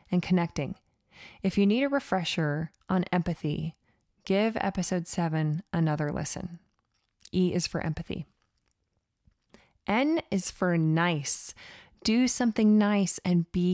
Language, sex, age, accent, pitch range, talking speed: English, female, 20-39, American, 170-205 Hz, 120 wpm